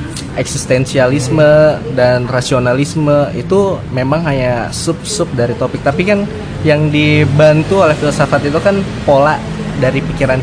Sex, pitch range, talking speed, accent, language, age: male, 125-145 Hz, 115 wpm, native, Indonesian, 20-39